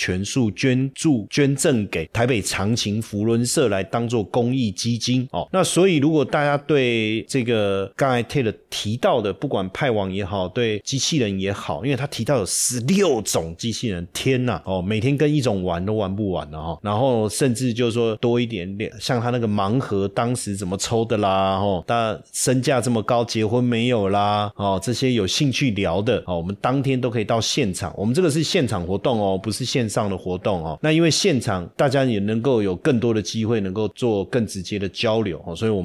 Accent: native